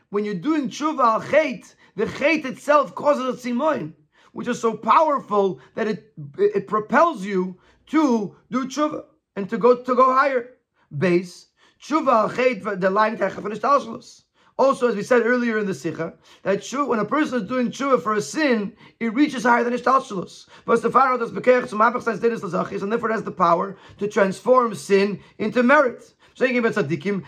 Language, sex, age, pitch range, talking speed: English, male, 40-59, 195-255 Hz, 195 wpm